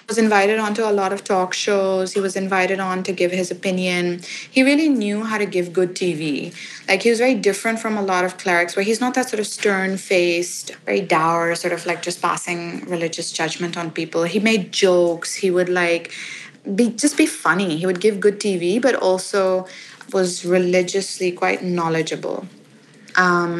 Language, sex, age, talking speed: English, female, 20-39, 190 wpm